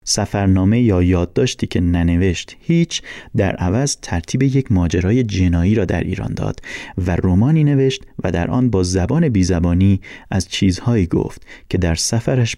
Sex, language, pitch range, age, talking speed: male, Persian, 90-125 Hz, 30-49, 150 wpm